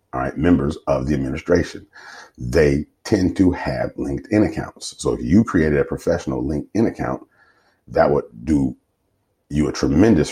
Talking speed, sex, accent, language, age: 150 wpm, male, American, English, 40-59